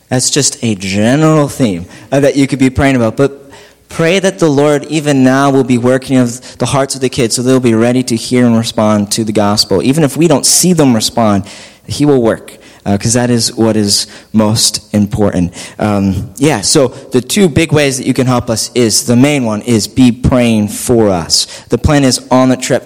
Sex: male